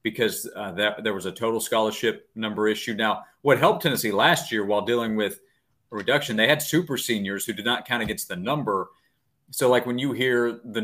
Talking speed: 210 wpm